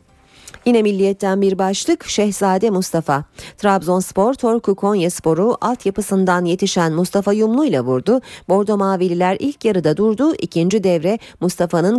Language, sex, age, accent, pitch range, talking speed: Turkish, female, 40-59, native, 165-225 Hz, 120 wpm